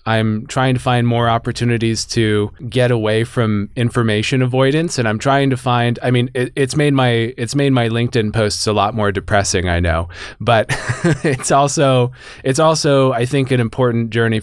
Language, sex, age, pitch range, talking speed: English, male, 20-39, 105-130 Hz, 185 wpm